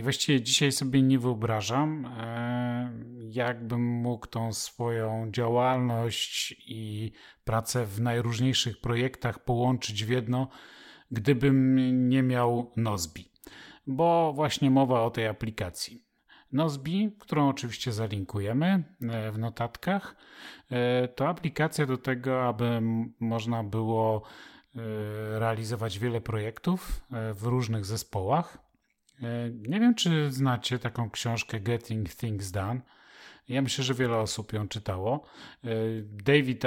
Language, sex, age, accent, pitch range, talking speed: Polish, male, 40-59, native, 115-135 Hz, 105 wpm